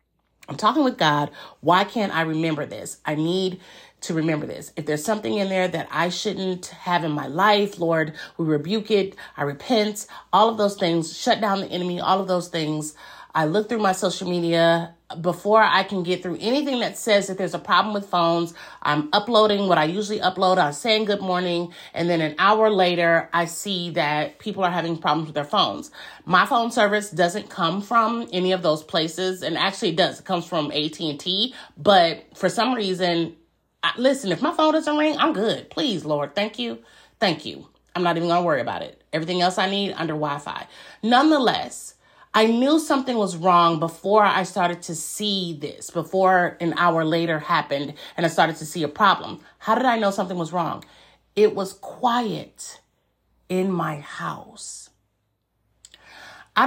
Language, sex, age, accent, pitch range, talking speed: English, female, 30-49, American, 165-210 Hz, 190 wpm